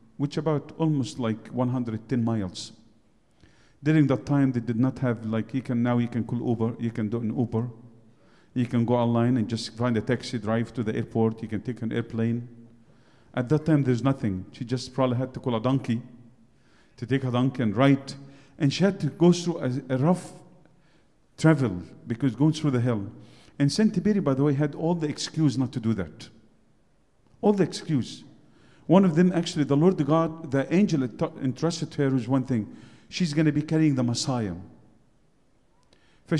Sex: male